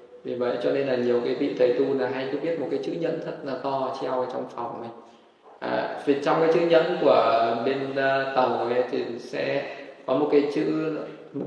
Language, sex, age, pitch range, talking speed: Vietnamese, male, 20-39, 135-155 Hz, 220 wpm